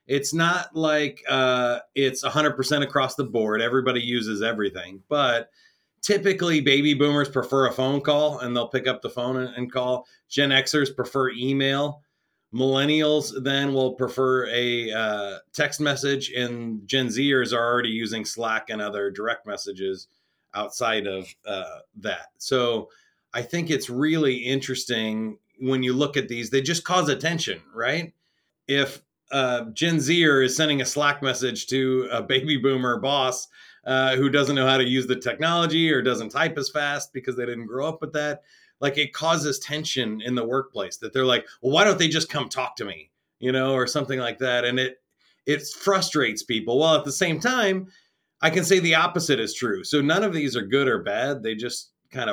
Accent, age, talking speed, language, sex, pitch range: American, 30-49, 180 wpm, English, male, 125-150 Hz